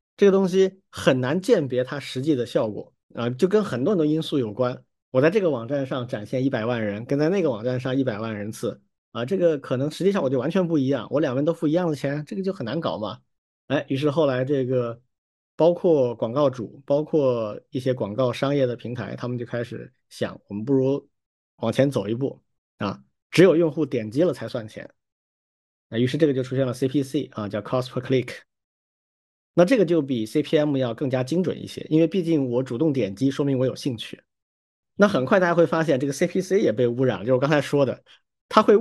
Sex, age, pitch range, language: male, 50-69, 125-160 Hz, Chinese